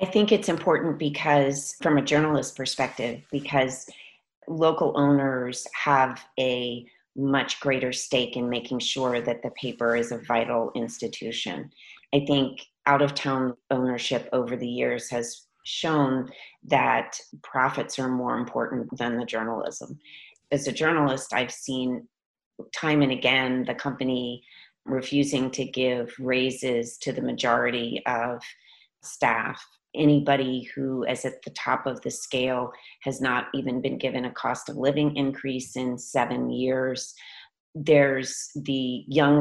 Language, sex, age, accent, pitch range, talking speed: English, female, 30-49, American, 125-140 Hz, 135 wpm